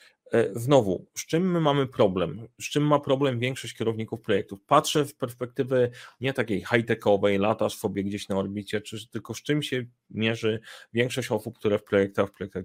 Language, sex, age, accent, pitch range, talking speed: Polish, male, 30-49, native, 105-130 Hz, 175 wpm